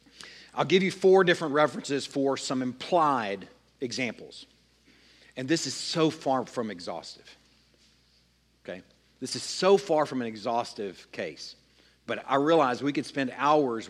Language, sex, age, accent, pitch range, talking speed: English, male, 50-69, American, 125-155 Hz, 145 wpm